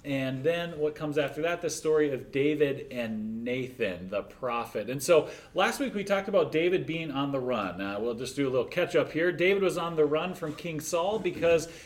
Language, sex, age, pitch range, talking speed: English, male, 40-59, 140-175 Hz, 225 wpm